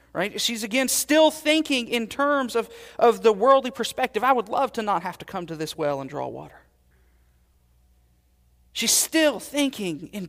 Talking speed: 175 wpm